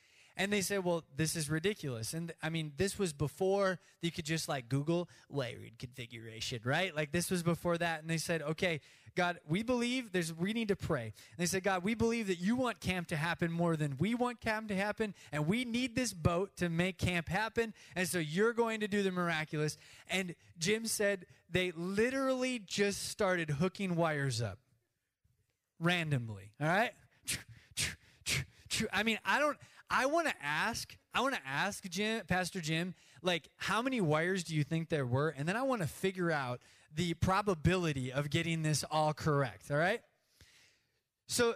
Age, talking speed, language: 20-39, 185 wpm, English